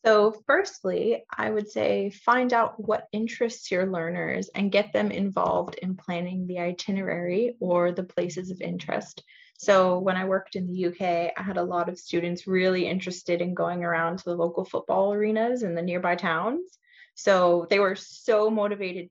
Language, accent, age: English, American, 20-39